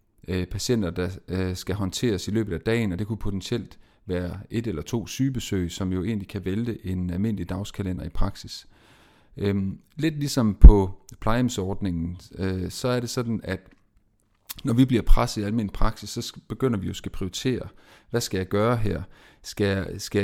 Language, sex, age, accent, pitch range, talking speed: Danish, male, 30-49, native, 95-115 Hz, 165 wpm